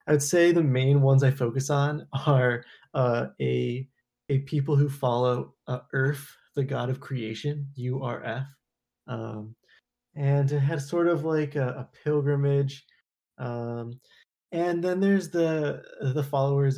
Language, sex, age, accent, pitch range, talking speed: English, male, 20-39, American, 115-145 Hz, 140 wpm